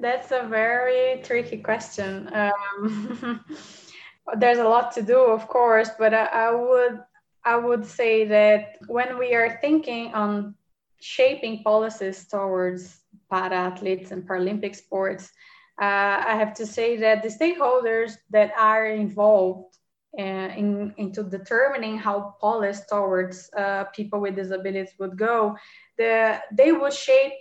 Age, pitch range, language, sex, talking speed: 20-39, 205-235 Hz, English, female, 125 wpm